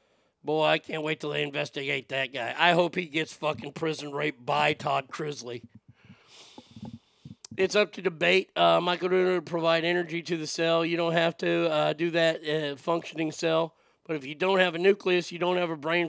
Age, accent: 40-59, American